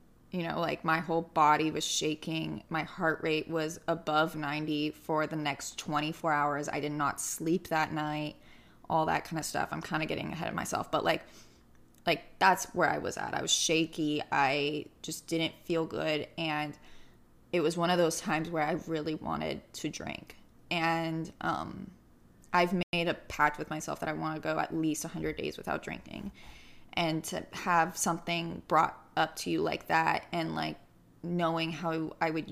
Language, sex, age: English, female, 20-39